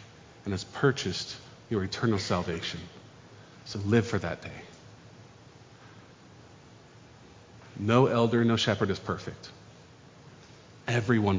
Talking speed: 95 wpm